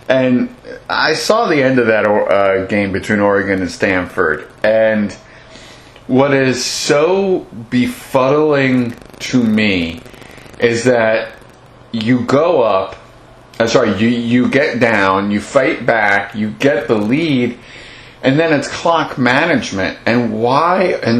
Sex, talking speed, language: male, 130 wpm, English